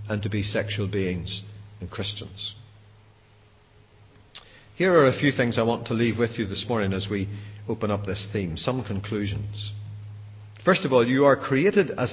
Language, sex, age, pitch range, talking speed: English, male, 50-69, 105-125 Hz, 175 wpm